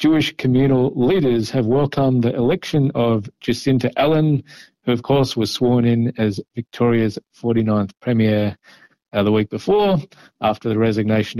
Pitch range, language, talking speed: 110-130 Hz, Hebrew, 140 wpm